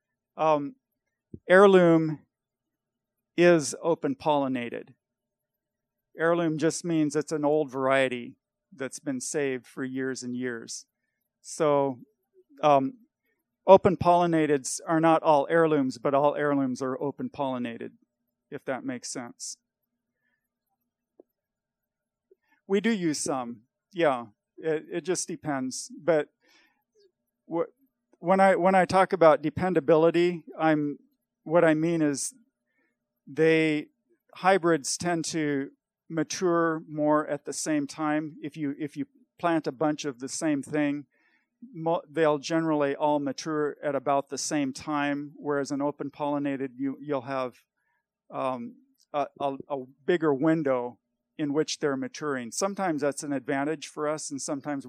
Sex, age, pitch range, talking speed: male, 40-59, 140-175 Hz, 125 wpm